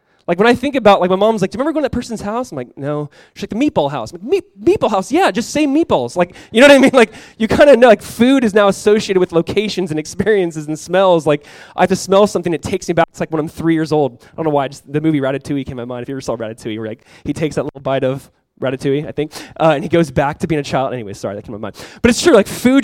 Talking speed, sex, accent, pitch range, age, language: 320 wpm, male, American, 145-190 Hz, 20-39, English